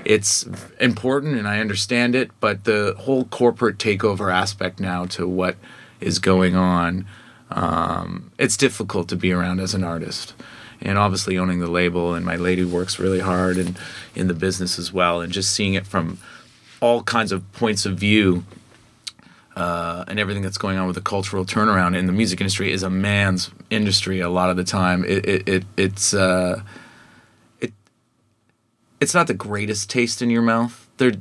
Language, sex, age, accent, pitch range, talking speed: English, male, 30-49, American, 90-110 Hz, 175 wpm